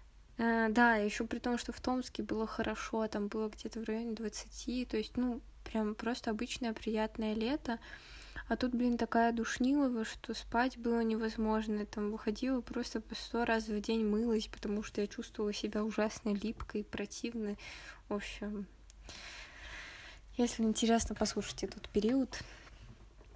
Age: 20-39